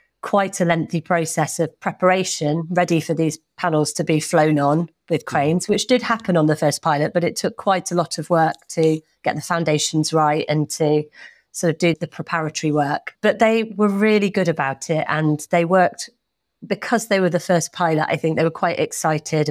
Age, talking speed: 30-49, 205 wpm